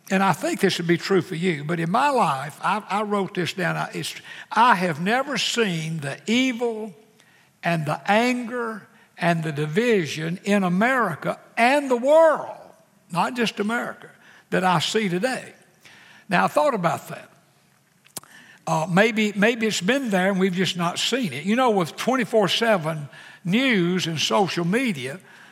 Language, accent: English, American